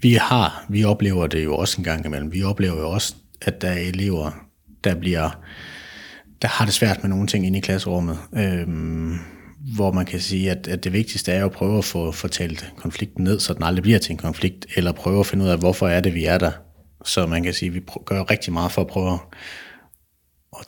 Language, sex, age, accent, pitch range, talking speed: Danish, male, 30-49, native, 80-100 Hz, 230 wpm